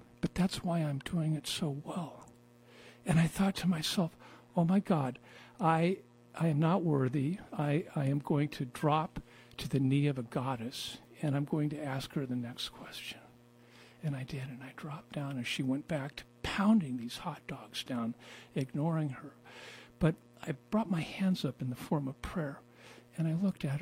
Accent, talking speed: American, 190 wpm